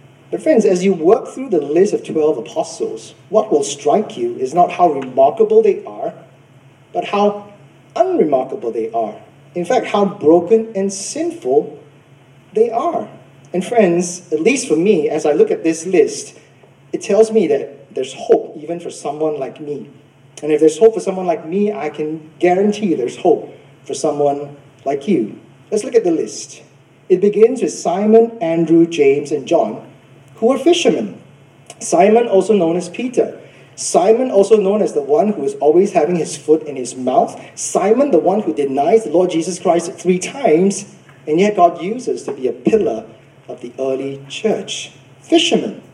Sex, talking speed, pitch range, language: male, 175 wpm, 155-255 Hz, English